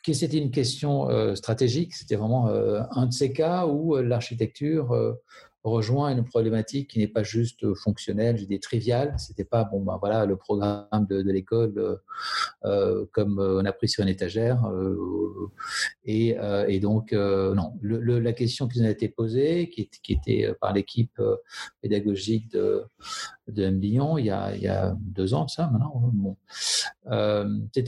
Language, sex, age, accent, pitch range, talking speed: French, male, 50-69, French, 105-135 Hz, 170 wpm